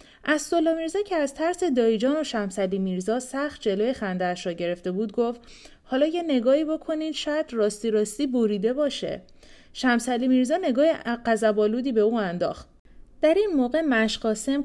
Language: Persian